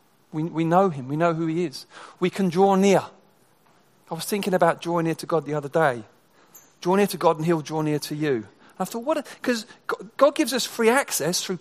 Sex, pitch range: male, 145-200 Hz